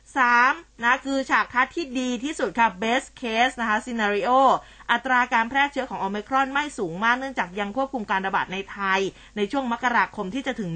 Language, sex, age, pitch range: Thai, female, 20-39, 205-255 Hz